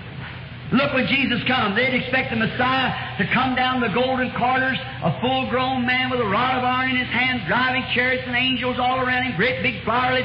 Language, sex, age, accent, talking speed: English, male, 50-69, American, 205 wpm